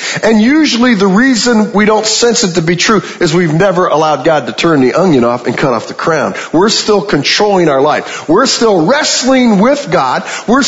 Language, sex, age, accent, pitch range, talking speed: English, male, 50-69, American, 180-240 Hz, 210 wpm